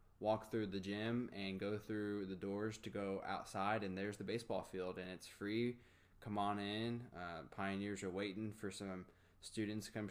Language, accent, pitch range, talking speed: English, American, 100-115 Hz, 190 wpm